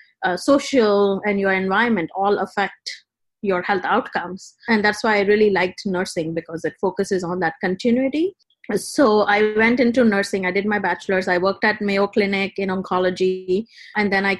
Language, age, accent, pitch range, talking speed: English, 30-49, Indian, 190-230 Hz, 175 wpm